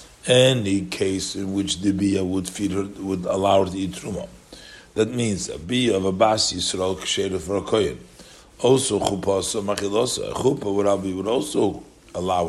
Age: 50-69